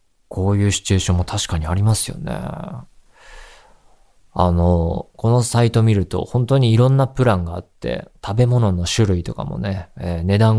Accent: native